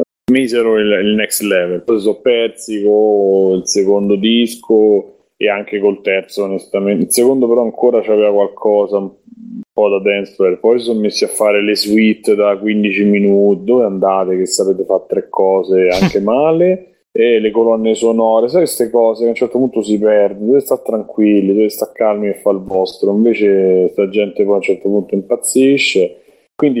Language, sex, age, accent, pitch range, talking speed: Italian, male, 20-39, native, 95-115 Hz, 180 wpm